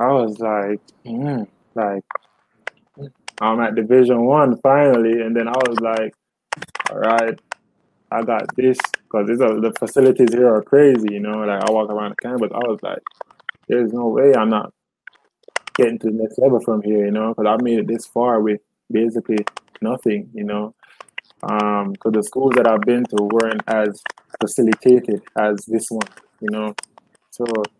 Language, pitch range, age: English, 105-120 Hz, 20-39